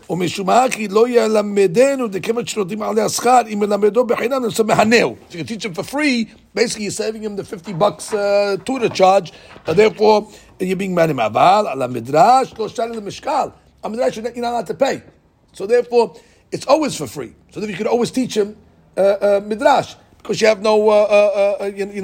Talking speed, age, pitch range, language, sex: 165 wpm, 50-69, 180-235 Hz, English, male